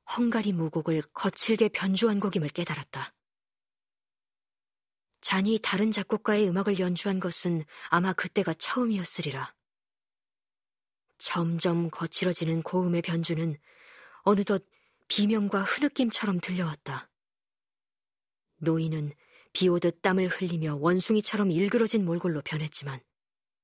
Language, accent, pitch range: Korean, native, 165-210 Hz